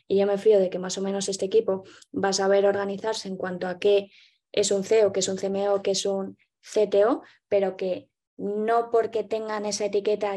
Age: 20-39